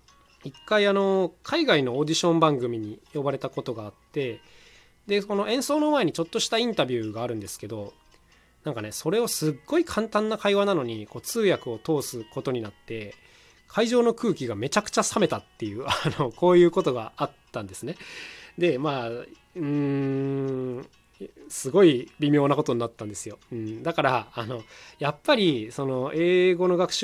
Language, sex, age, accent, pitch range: Japanese, male, 20-39, native, 120-185 Hz